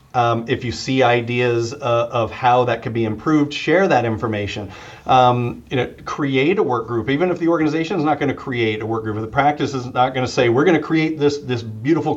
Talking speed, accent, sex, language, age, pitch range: 240 wpm, American, male, English, 40-59, 115-140 Hz